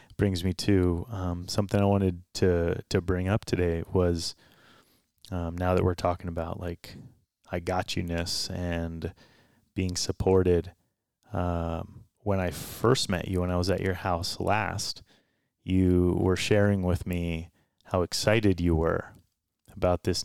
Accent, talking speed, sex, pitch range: American, 150 wpm, male, 85-100 Hz